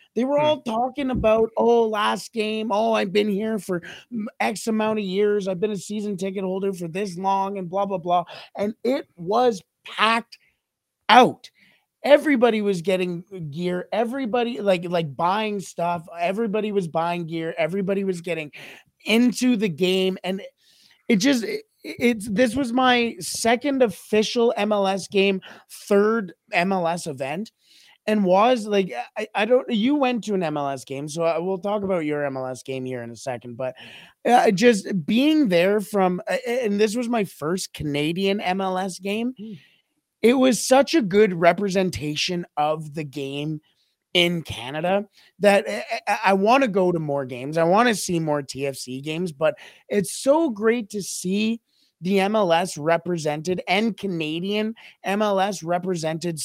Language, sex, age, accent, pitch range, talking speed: English, male, 30-49, American, 170-225 Hz, 155 wpm